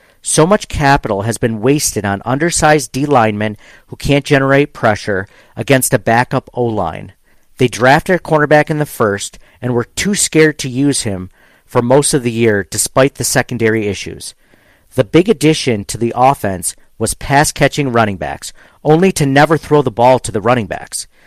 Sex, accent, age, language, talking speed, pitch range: male, American, 50-69, English, 170 wpm, 115-150 Hz